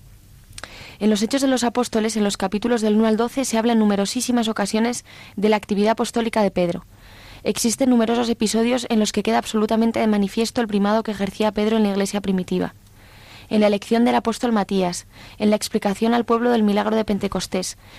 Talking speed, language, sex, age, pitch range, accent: 195 wpm, Spanish, female, 20-39, 200-230 Hz, Spanish